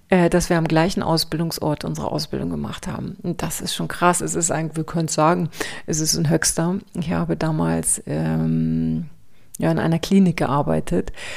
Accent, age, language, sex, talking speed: German, 40-59, German, female, 175 wpm